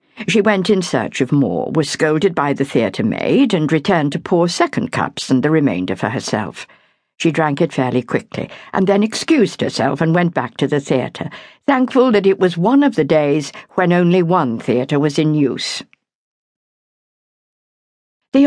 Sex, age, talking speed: female, 60-79, 175 wpm